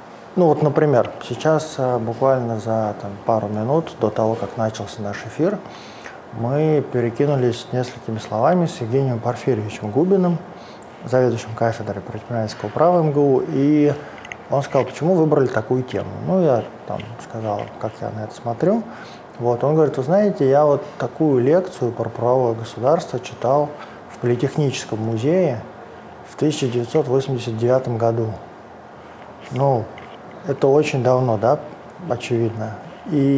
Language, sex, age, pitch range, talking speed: Russian, male, 20-39, 115-140 Hz, 125 wpm